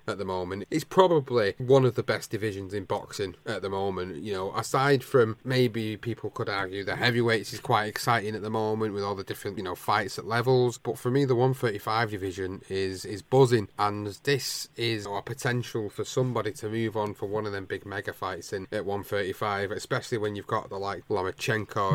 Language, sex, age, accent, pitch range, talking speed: English, male, 30-49, British, 105-125 Hz, 215 wpm